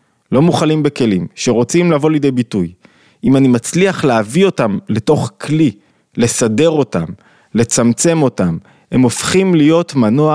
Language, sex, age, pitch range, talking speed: Hebrew, male, 20-39, 120-155 Hz, 130 wpm